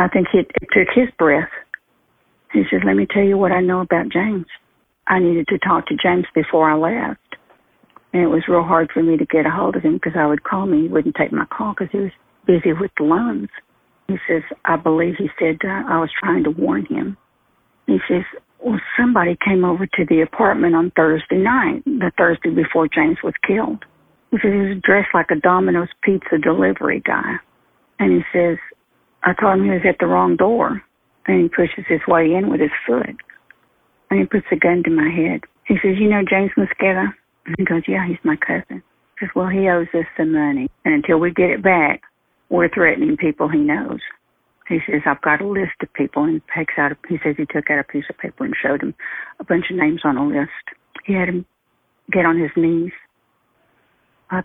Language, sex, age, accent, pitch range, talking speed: English, female, 50-69, American, 165-195 Hz, 220 wpm